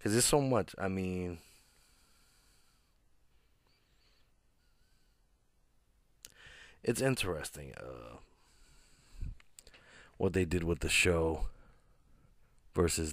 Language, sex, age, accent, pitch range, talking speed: English, male, 30-49, American, 80-90 Hz, 75 wpm